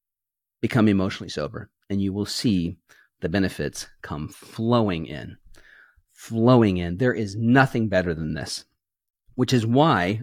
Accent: American